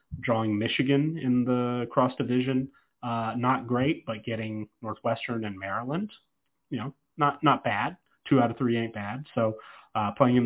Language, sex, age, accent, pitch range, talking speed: English, male, 30-49, American, 110-130 Hz, 165 wpm